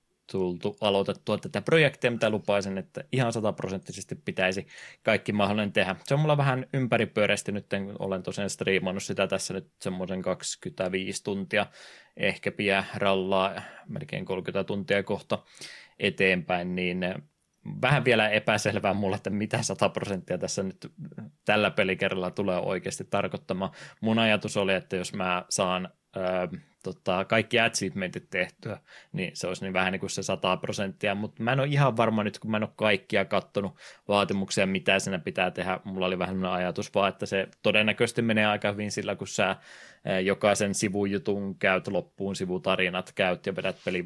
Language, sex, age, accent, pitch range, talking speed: Finnish, male, 20-39, native, 95-105 Hz, 155 wpm